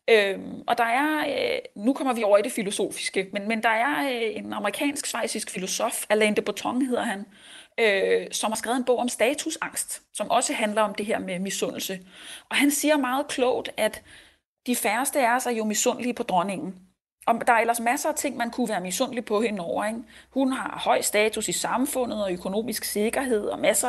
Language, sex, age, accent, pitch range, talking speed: Danish, female, 30-49, native, 210-265 Hz, 205 wpm